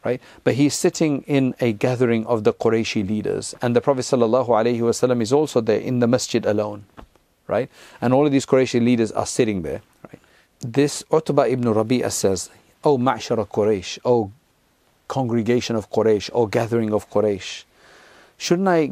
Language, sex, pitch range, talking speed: English, male, 115-145 Hz, 170 wpm